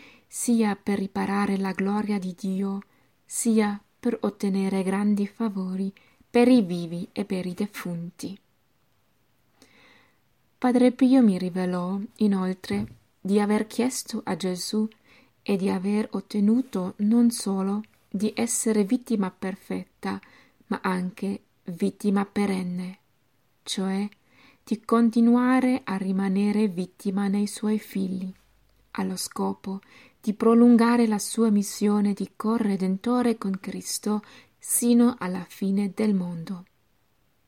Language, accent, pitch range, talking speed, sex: Italian, native, 185-215 Hz, 110 wpm, female